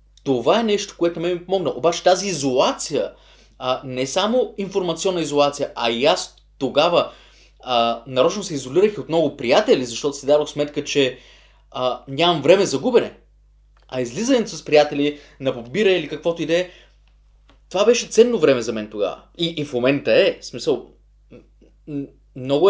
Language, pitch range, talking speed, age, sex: Bulgarian, 140-205 Hz, 160 wpm, 20-39, male